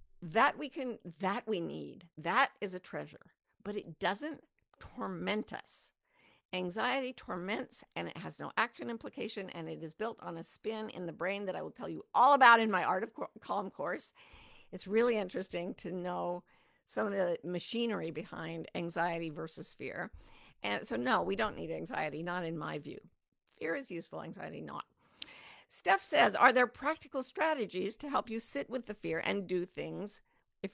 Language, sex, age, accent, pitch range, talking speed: English, female, 50-69, American, 180-250 Hz, 180 wpm